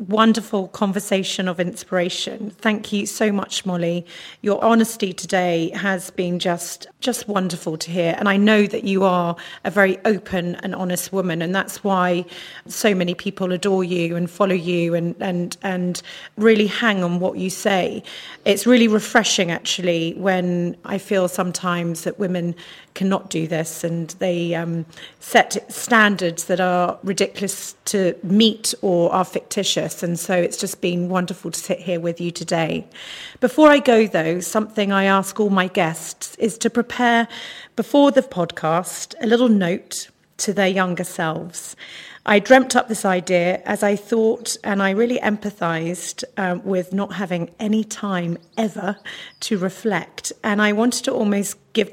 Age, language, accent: 40-59, English, British